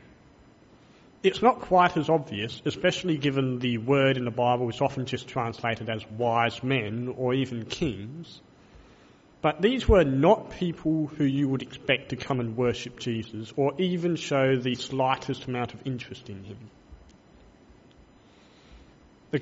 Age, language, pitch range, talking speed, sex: 40-59, English, 120-155 Hz, 145 wpm, male